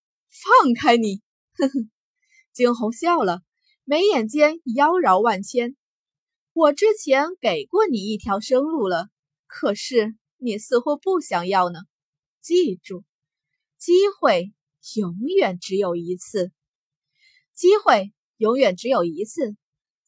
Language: Chinese